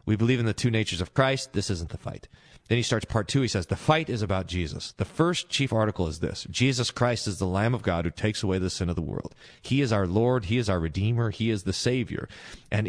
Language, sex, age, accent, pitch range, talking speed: English, male, 40-59, American, 95-125 Hz, 270 wpm